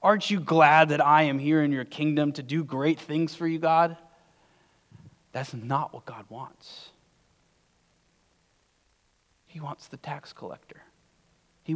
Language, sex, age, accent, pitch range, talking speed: English, male, 30-49, American, 125-160 Hz, 145 wpm